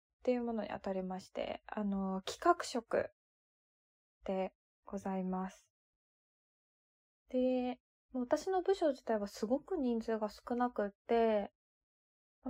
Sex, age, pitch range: female, 20-39, 195-250 Hz